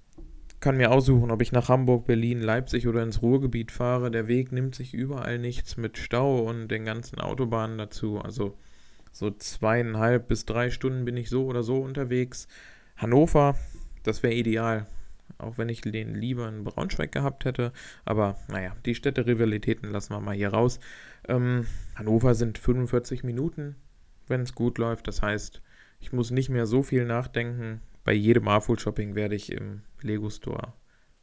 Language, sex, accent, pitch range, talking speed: German, male, German, 110-125 Hz, 165 wpm